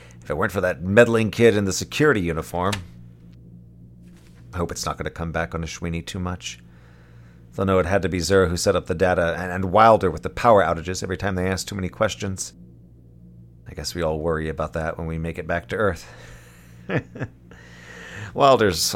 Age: 40-59